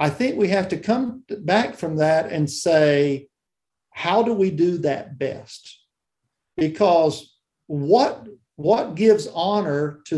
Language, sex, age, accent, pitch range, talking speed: English, male, 50-69, American, 145-200 Hz, 135 wpm